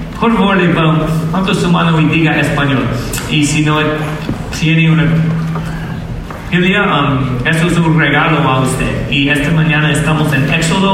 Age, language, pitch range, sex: 30-49, English, 145-165 Hz, male